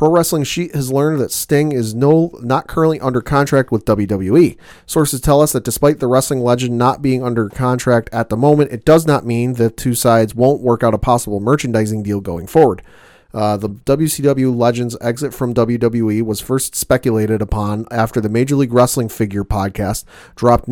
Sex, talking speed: male, 190 wpm